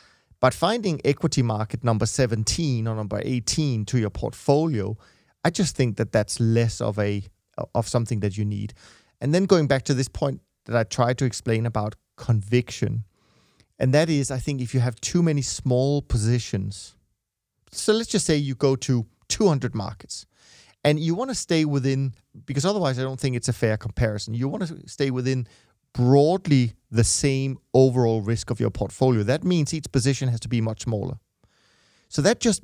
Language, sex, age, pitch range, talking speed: English, male, 30-49, 115-140 Hz, 185 wpm